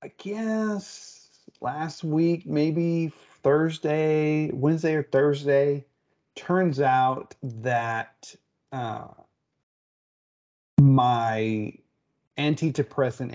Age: 30-49